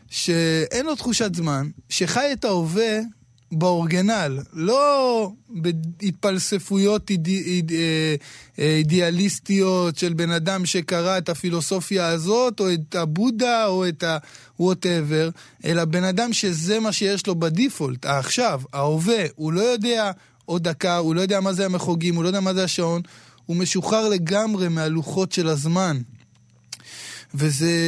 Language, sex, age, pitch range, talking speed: Hebrew, male, 20-39, 160-215 Hz, 130 wpm